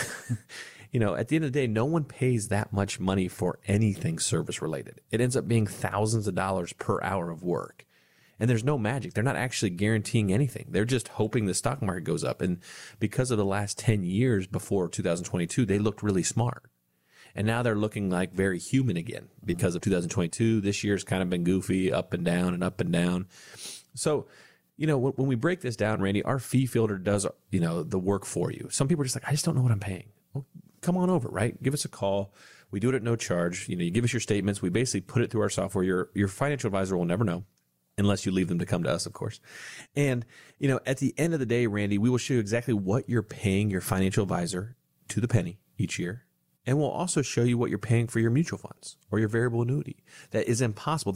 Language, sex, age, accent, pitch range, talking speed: English, male, 30-49, American, 95-125 Hz, 240 wpm